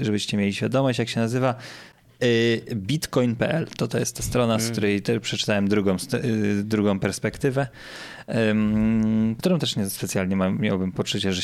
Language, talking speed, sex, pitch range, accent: Polish, 130 wpm, male, 105-120 Hz, native